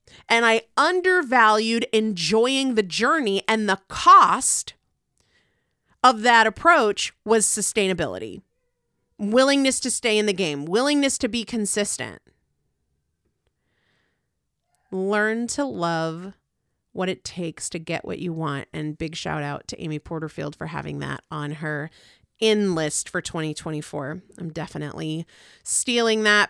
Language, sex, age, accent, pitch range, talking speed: English, female, 30-49, American, 170-255 Hz, 125 wpm